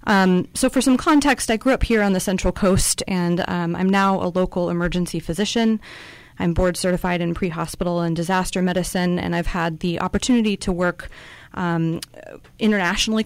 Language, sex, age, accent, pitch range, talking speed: English, female, 30-49, American, 170-200 Hz, 165 wpm